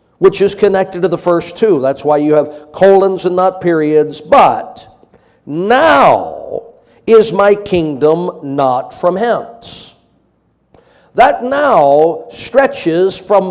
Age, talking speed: 50-69, 120 wpm